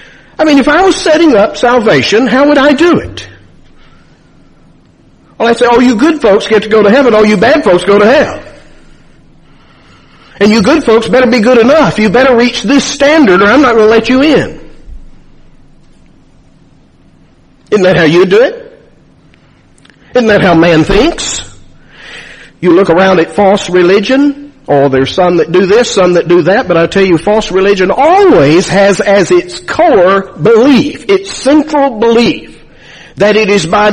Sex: male